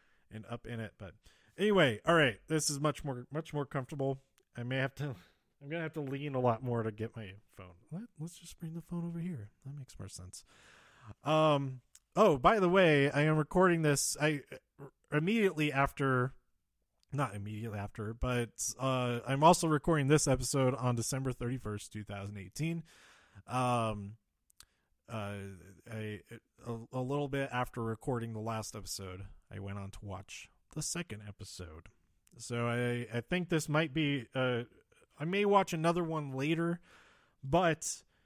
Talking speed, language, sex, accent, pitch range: 160 wpm, English, male, American, 110-155 Hz